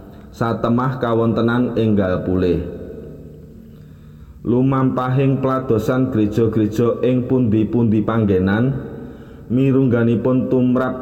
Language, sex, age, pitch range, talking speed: Indonesian, male, 30-49, 110-125 Hz, 95 wpm